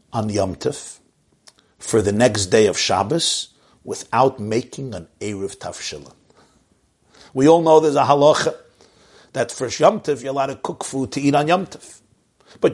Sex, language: male, English